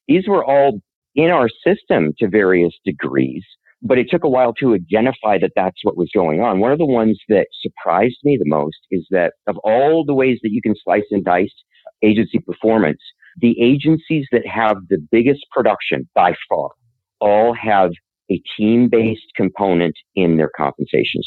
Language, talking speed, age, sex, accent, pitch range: English, 175 wpm, 50-69, male, American, 95-120 Hz